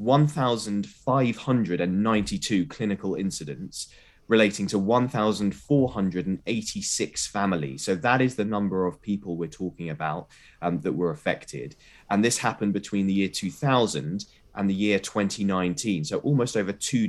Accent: British